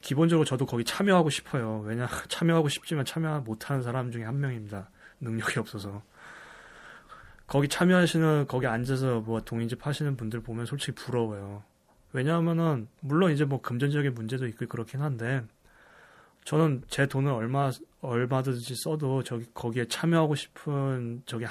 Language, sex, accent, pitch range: Korean, male, native, 115-150 Hz